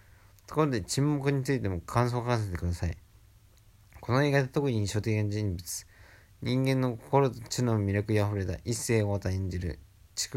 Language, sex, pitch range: Japanese, male, 95-115 Hz